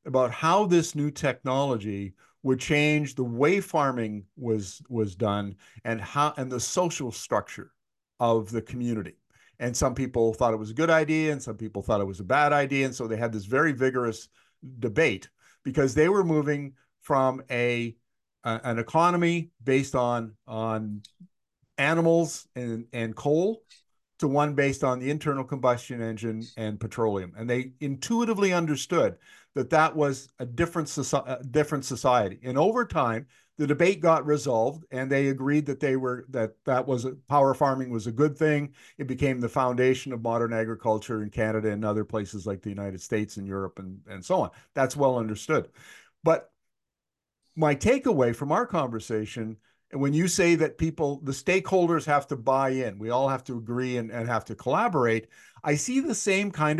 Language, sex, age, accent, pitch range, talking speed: English, male, 50-69, American, 115-150 Hz, 175 wpm